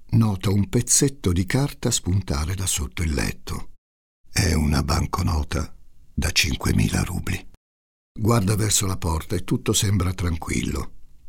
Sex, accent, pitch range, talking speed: male, native, 80-100 Hz, 130 wpm